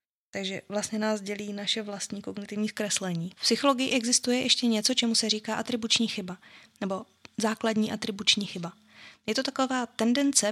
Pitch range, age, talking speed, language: 195-225 Hz, 20-39, 150 wpm, Czech